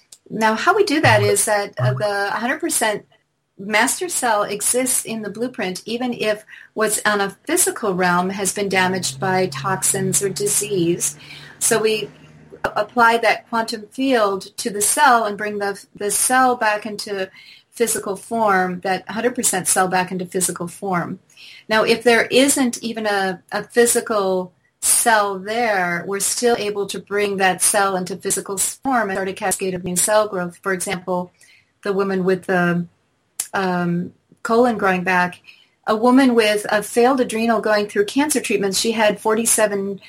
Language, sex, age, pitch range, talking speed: English, female, 40-59, 190-230 Hz, 160 wpm